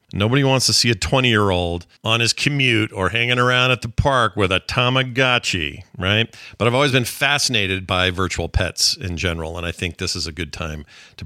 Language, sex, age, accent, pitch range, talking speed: English, male, 40-59, American, 95-125 Hz, 205 wpm